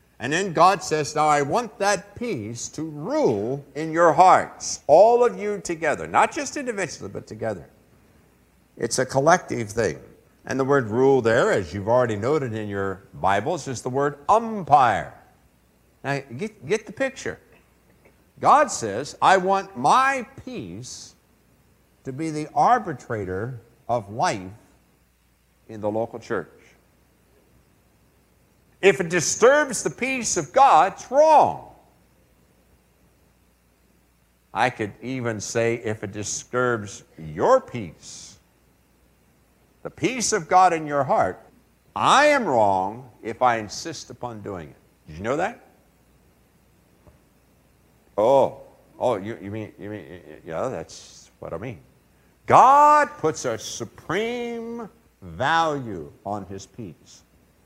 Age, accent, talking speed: 60-79, American, 130 wpm